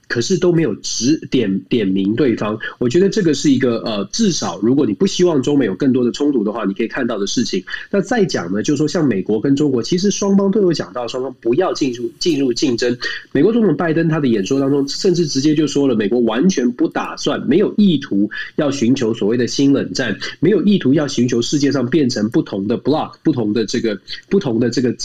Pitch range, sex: 120-185 Hz, male